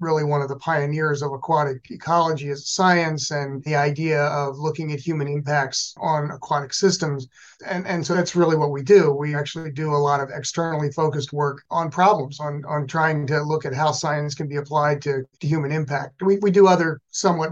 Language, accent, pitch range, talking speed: English, American, 145-170 Hz, 210 wpm